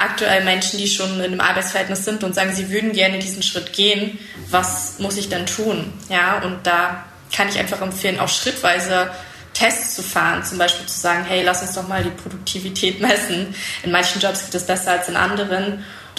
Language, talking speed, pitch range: German, 205 wpm, 180-200 Hz